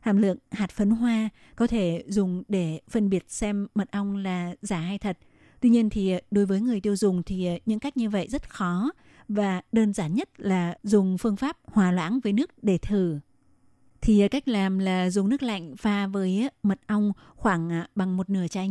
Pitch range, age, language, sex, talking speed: 190-220 Hz, 20-39, Vietnamese, female, 200 wpm